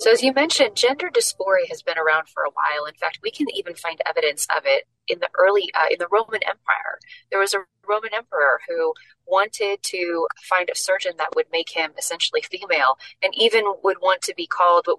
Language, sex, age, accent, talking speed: English, female, 20-39, American, 215 wpm